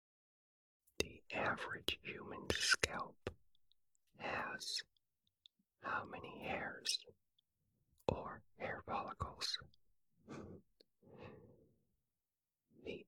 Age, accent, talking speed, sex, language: 40-59, American, 50 wpm, male, English